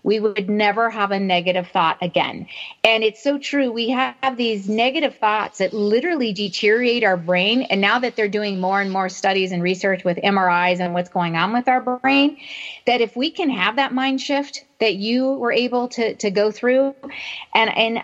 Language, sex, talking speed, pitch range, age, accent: English, female, 200 wpm, 190-255 Hz, 40-59, American